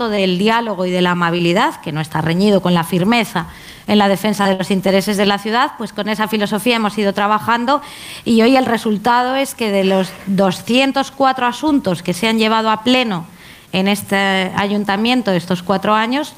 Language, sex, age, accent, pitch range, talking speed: Spanish, female, 20-39, Spanish, 185-230 Hz, 185 wpm